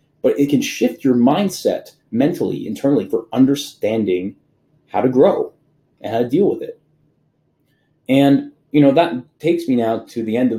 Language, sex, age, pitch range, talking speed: English, male, 20-39, 115-155 Hz, 170 wpm